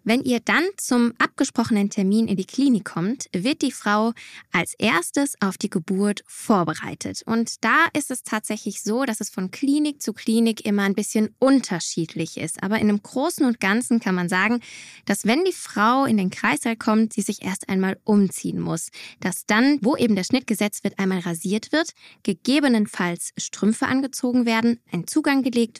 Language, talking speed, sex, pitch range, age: German, 180 wpm, female, 195-250 Hz, 10-29